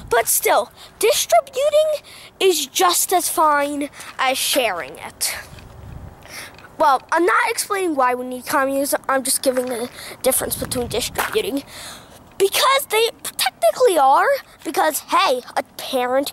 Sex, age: female, 20-39